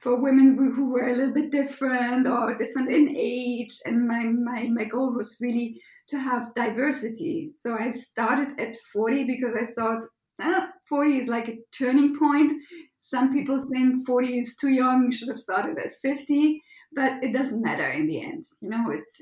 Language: English